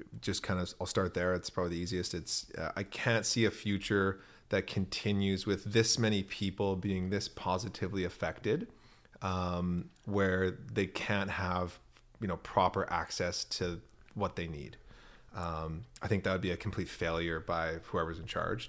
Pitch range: 90-105 Hz